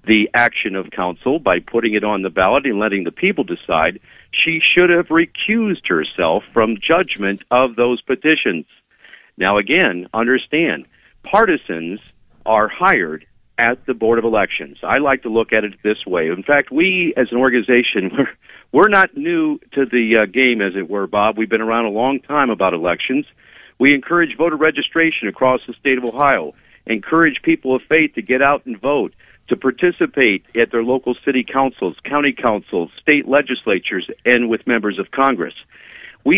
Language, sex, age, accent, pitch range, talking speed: English, male, 50-69, American, 110-150 Hz, 170 wpm